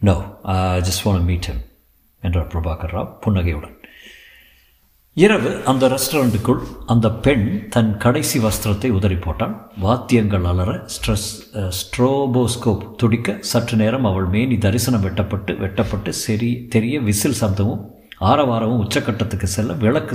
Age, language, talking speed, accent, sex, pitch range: 50-69, Tamil, 90 wpm, native, male, 100-125 Hz